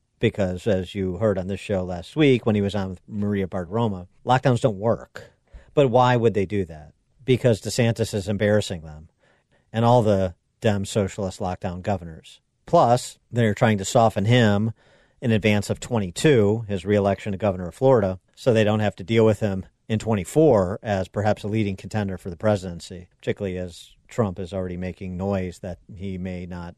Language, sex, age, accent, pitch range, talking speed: English, male, 50-69, American, 95-115 Hz, 185 wpm